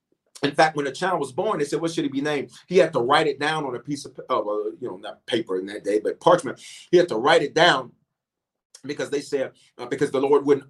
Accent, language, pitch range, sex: American, English, 145-200 Hz, male